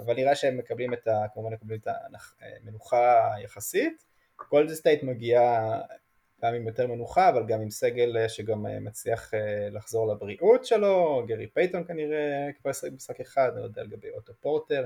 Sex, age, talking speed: male, 20-39, 155 wpm